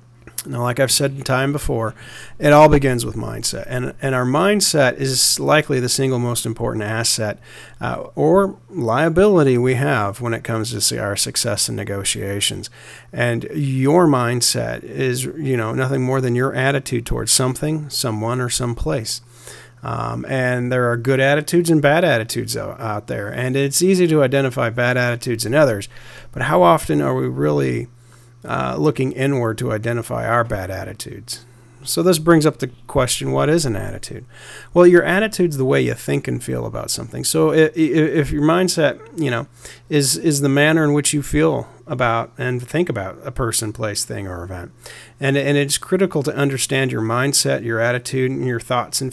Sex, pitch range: male, 115-145 Hz